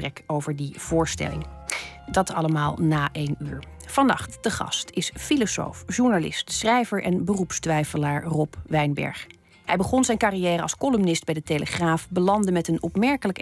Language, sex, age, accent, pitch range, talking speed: Dutch, female, 40-59, Dutch, 155-190 Hz, 145 wpm